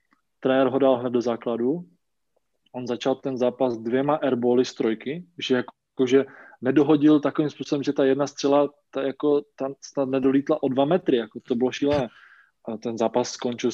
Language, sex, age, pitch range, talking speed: Slovak, male, 20-39, 120-140 Hz, 165 wpm